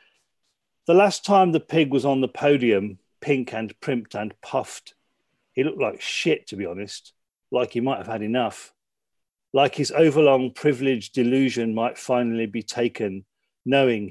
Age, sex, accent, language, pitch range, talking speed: 40-59, male, British, English, 120-165 Hz, 155 wpm